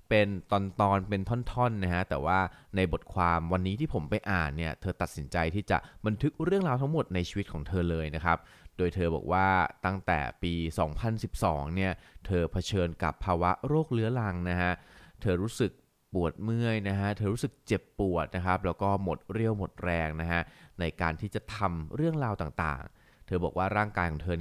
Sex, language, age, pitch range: male, Thai, 20-39, 85-110 Hz